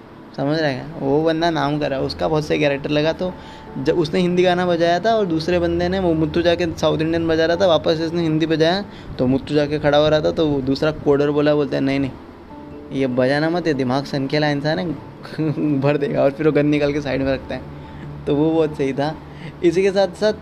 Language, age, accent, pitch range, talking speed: Hindi, 20-39, native, 145-170 Hz, 235 wpm